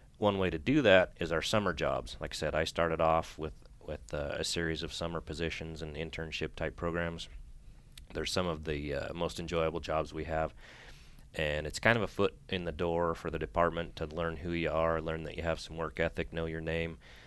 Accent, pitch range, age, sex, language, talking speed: American, 80-85 Hz, 30-49, male, English, 220 wpm